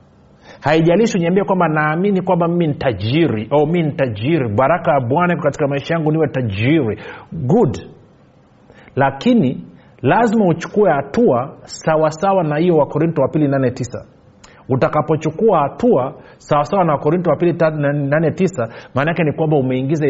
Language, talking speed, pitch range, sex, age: Swahili, 120 wpm, 120-170 Hz, male, 40-59